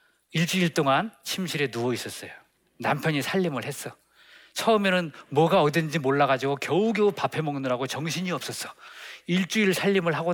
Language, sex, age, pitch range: Korean, male, 40-59, 140-225 Hz